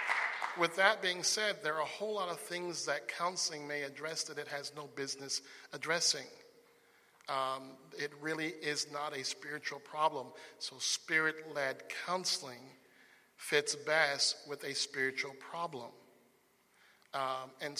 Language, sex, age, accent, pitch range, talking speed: English, male, 50-69, American, 135-155 Hz, 135 wpm